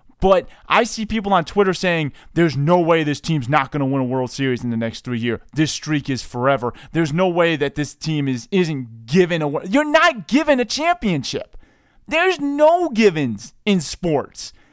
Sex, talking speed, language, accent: male, 200 wpm, English, American